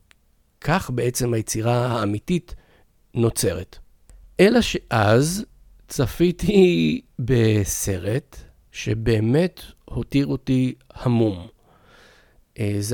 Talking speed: 65 wpm